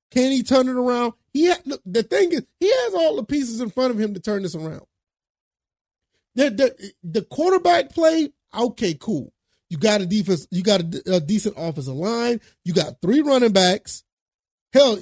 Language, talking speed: English, 190 wpm